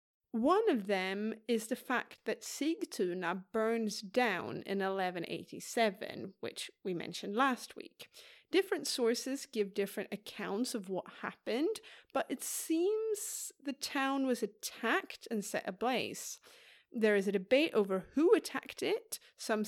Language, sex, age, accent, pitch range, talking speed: English, female, 30-49, British, 205-280 Hz, 135 wpm